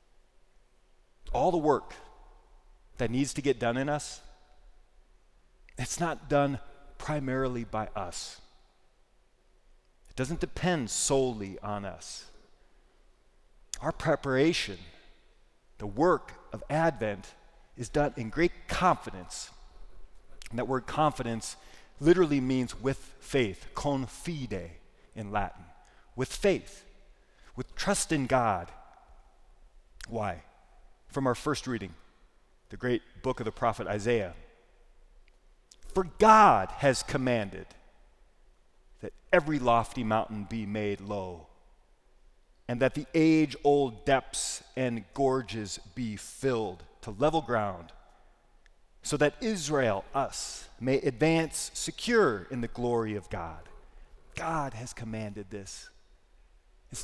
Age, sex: 40-59, male